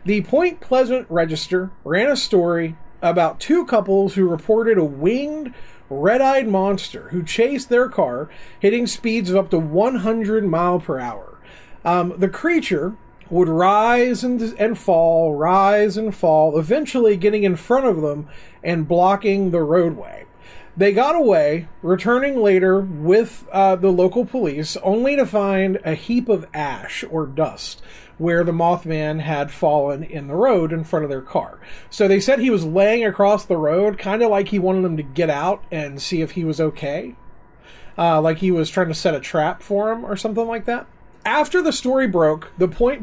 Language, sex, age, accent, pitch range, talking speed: English, male, 40-59, American, 165-220 Hz, 175 wpm